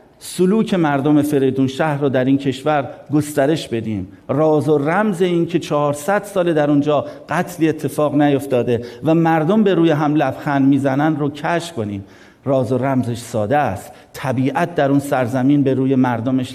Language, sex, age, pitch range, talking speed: Persian, male, 50-69, 120-150 Hz, 160 wpm